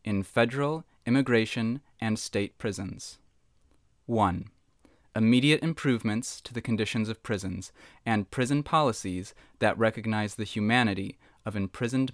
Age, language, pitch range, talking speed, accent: 20-39, English, 100-125 Hz, 115 wpm, American